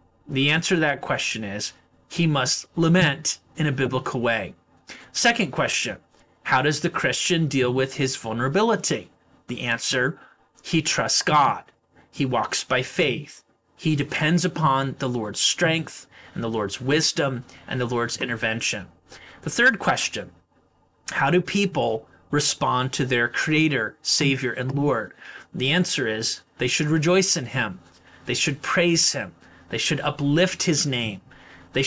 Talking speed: 145 wpm